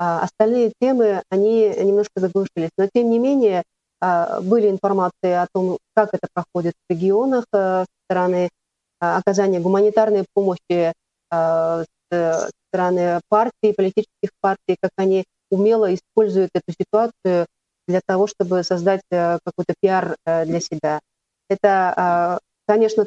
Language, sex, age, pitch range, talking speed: Russian, female, 30-49, 175-205 Hz, 115 wpm